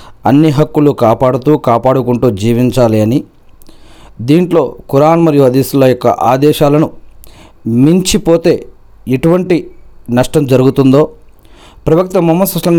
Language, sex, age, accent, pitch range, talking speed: Telugu, male, 40-59, native, 125-165 Hz, 90 wpm